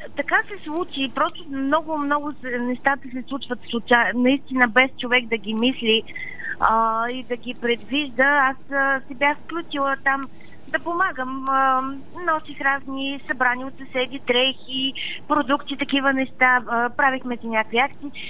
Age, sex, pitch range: 20-39, female, 250-310 Hz